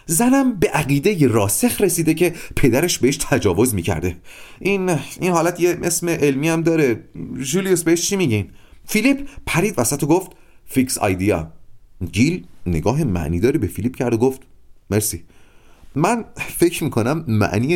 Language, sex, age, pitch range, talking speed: Persian, male, 30-49, 105-165 Hz, 140 wpm